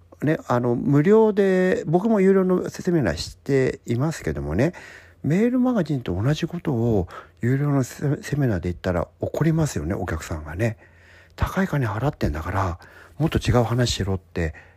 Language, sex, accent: Japanese, male, native